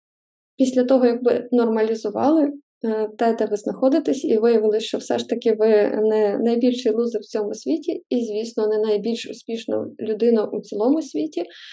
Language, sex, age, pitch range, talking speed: Ukrainian, female, 20-39, 220-260 Hz, 160 wpm